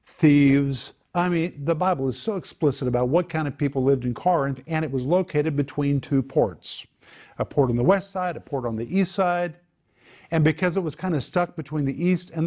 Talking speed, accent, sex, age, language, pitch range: 220 wpm, American, male, 50-69, English, 120-160 Hz